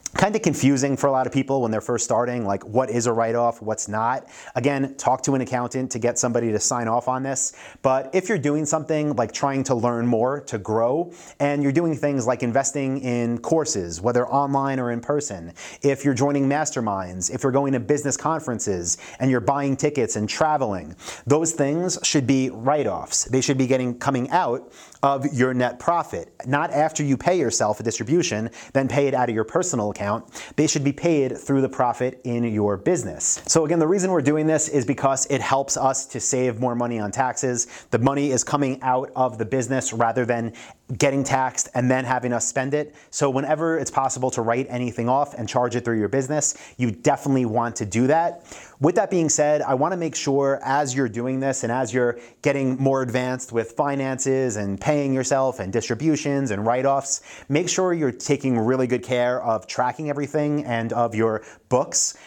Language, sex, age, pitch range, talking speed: English, male, 30-49, 120-140 Hz, 205 wpm